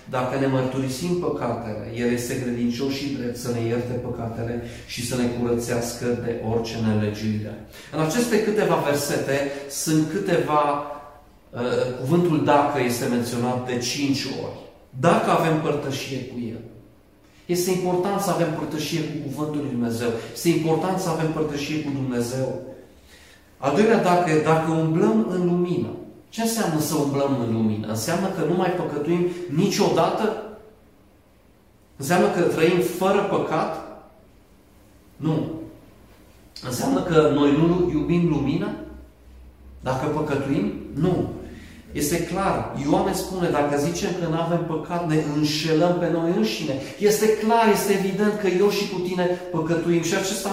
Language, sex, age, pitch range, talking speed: Romanian, male, 30-49, 120-175 Hz, 140 wpm